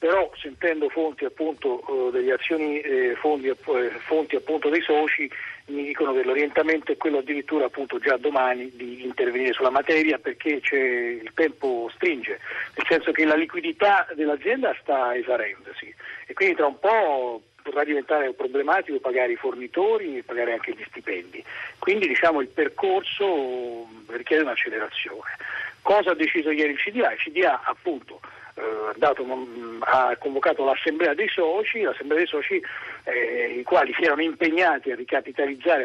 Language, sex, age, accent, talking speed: Italian, male, 50-69, native, 140 wpm